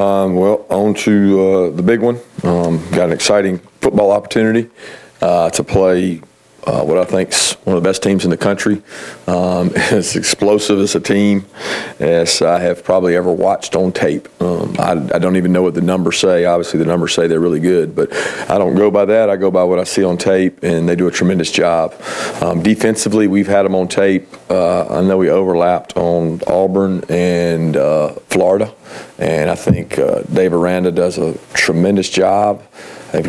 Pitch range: 90-100 Hz